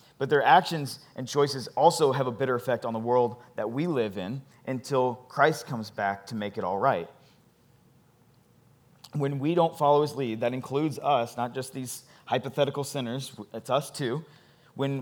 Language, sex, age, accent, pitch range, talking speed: English, male, 30-49, American, 120-145 Hz, 175 wpm